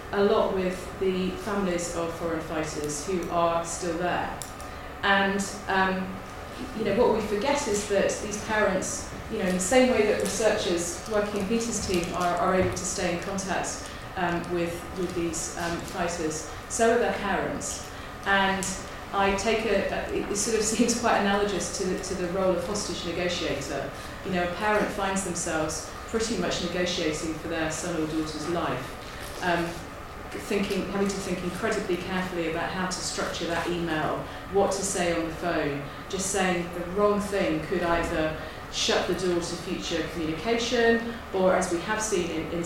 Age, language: 30-49, English